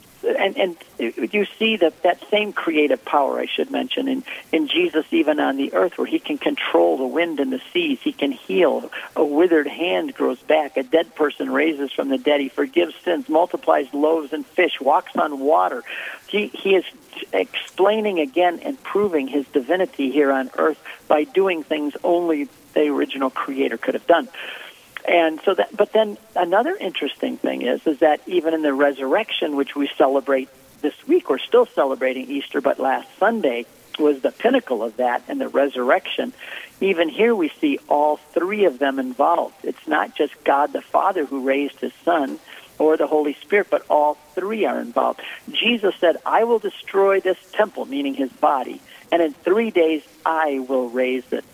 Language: English